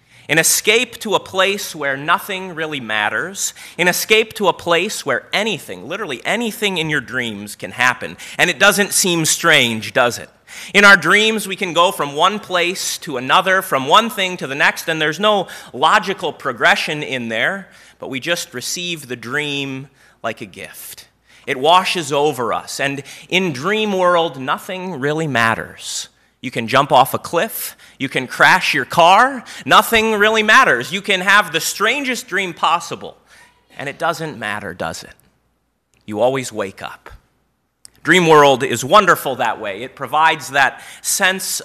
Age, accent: 30-49, American